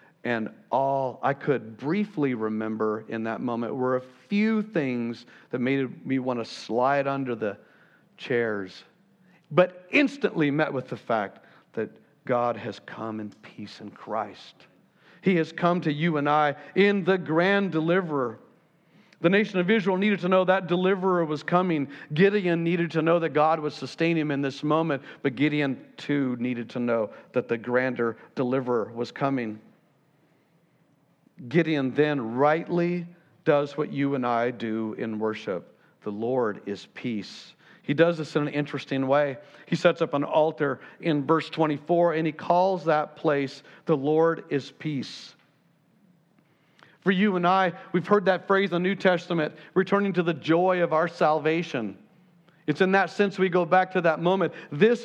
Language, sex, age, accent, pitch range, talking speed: English, male, 50-69, American, 135-185 Hz, 165 wpm